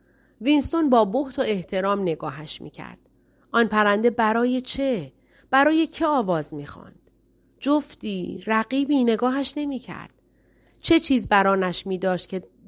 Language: Persian